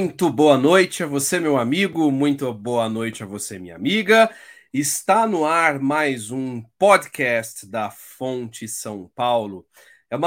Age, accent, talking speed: 40-59, Brazilian, 150 wpm